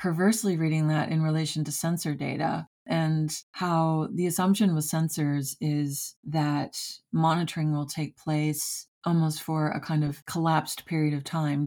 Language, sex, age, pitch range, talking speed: English, female, 30-49, 150-165 Hz, 150 wpm